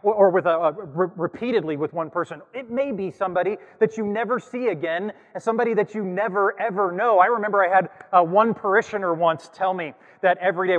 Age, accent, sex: 30-49, American, male